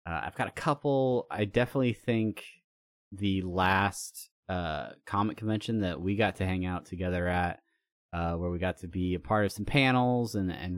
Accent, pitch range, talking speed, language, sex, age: American, 90-100 Hz, 190 wpm, English, male, 20-39